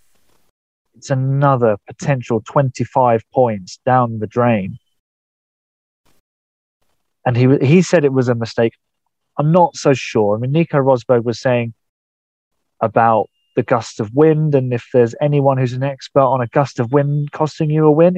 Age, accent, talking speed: 30-49, British, 155 wpm